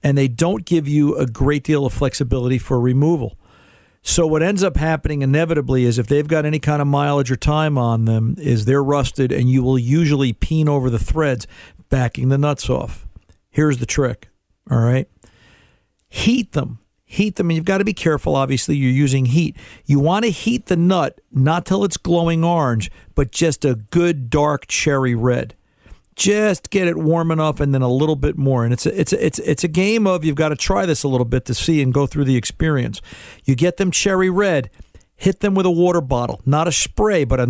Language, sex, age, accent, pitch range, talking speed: English, male, 50-69, American, 130-170 Hz, 210 wpm